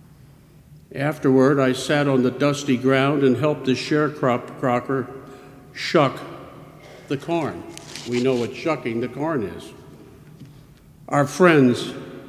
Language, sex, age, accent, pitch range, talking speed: English, male, 60-79, American, 130-145 Hz, 110 wpm